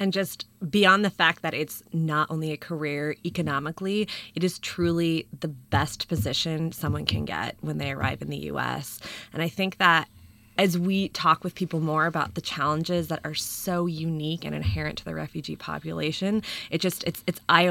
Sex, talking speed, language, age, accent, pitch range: female, 185 wpm, English, 20-39, American, 155-180 Hz